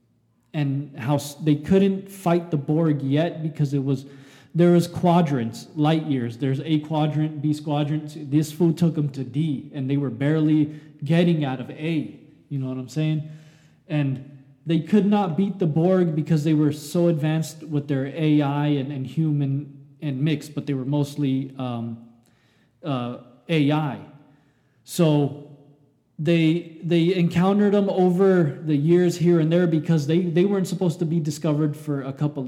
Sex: male